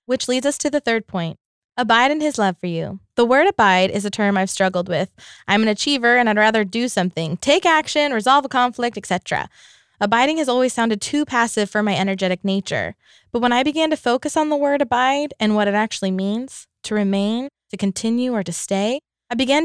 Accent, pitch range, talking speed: American, 195-245 Hz, 215 wpm